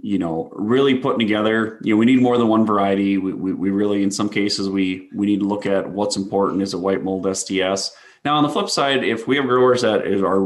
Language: English